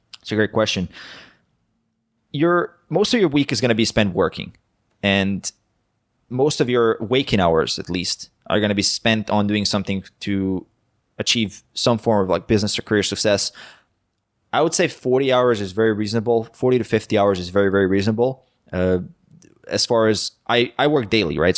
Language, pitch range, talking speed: English, 100-120 Hz, 180 wpm